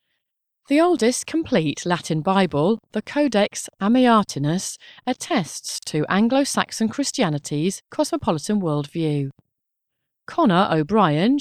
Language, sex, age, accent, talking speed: English, female, 30-49, British, 85 wpm